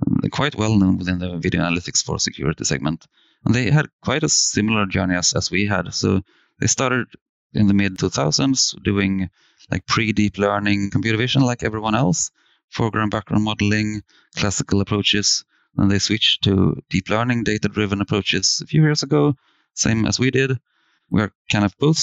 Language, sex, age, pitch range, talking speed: English, male, 30-49, 95-115 Hz, 165 wpm